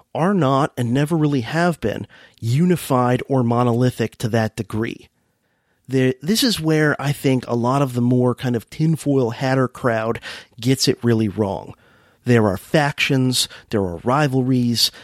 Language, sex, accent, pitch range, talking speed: English, male, American, 115-140 Hz, 150 wpm